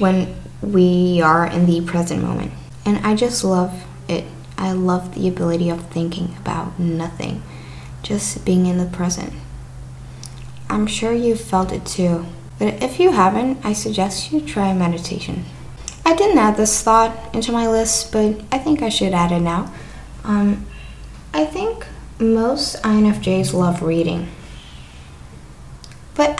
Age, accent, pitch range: 10-29, American, 170-225 Hz